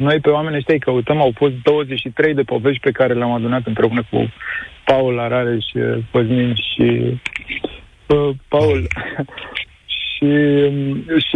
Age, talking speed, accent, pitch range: 50-69, 130 wpm, native, 125-160 Hz